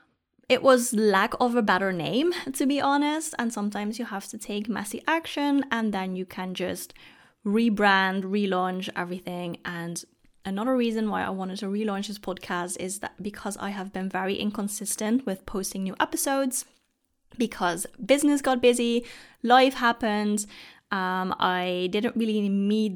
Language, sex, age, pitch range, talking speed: English, female, 20-39, 190-245 Hz, 155 wpm